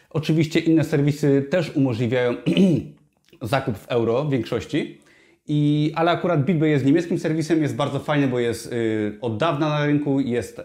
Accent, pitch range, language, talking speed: native, 125-160 Hz, Polish, 150 wpm